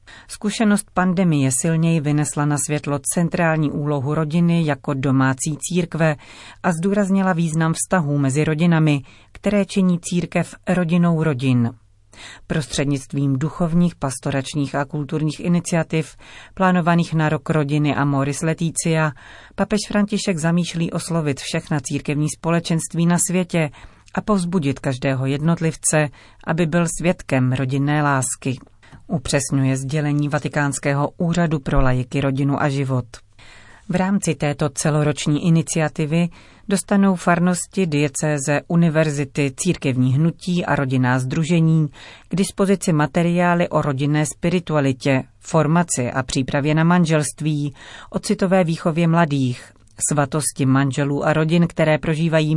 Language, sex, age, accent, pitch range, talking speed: Czech, female, 40-59, native, 140-170 Hz, 110 wpm